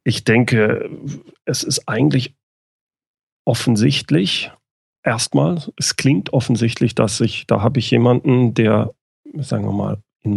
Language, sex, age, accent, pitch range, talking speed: German, male, 40-59, German, 110-130 Hz, 120 wpm